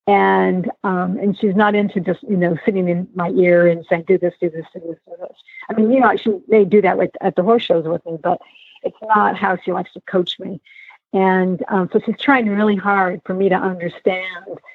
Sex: female